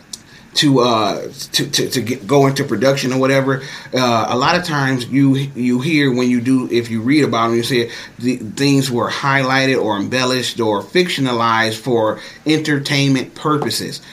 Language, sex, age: English, male, 30-49